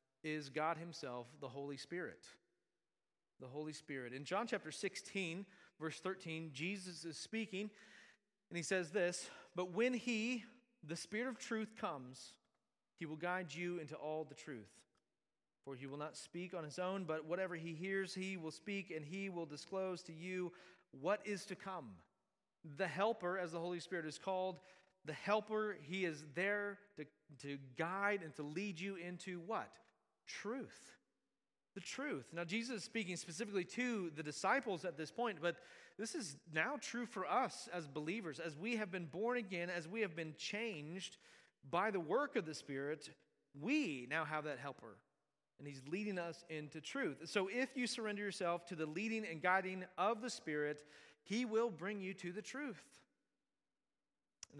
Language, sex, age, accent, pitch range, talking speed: English, male, 30-49, American, 155-205 Hz, 175 wpm